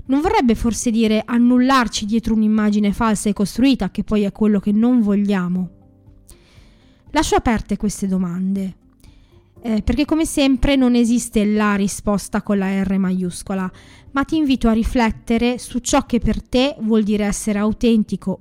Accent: native